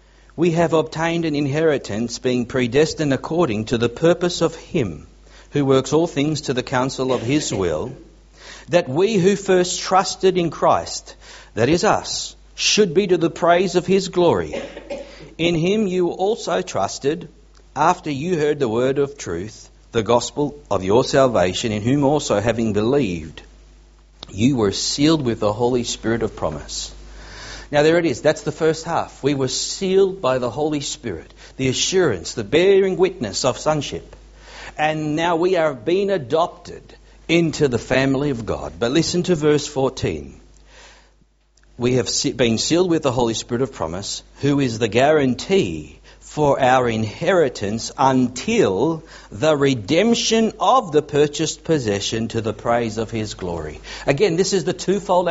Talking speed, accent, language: 155 wpm, Australian, English